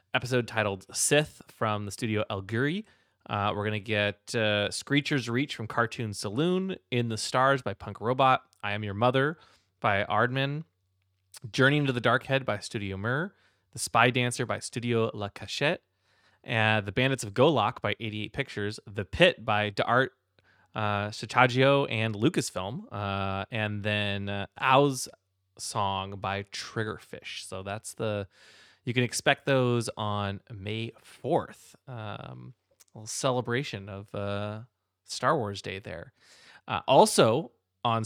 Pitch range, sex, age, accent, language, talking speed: 105-130 Hz, male, 20-39, American, English, 140 wpm